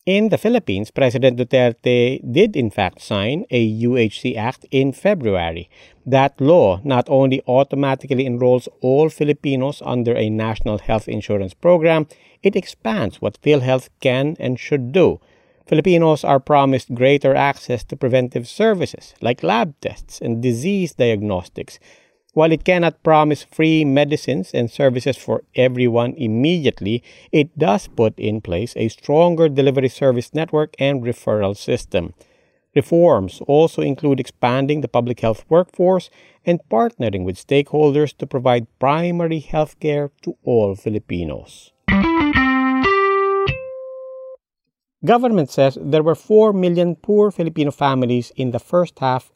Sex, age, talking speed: male, 50-69, 130 wpm